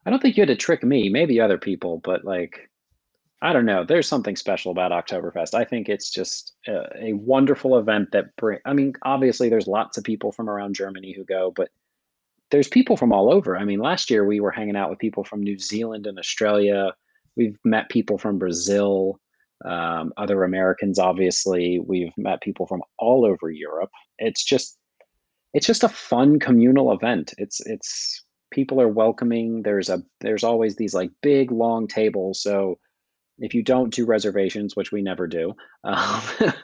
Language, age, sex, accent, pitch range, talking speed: English, 30-49, male, American, 95-130 Hz, 185 wpm